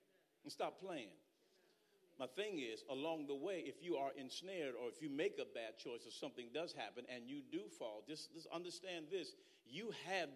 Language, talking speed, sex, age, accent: English, 195 wpm, male, 50-69, American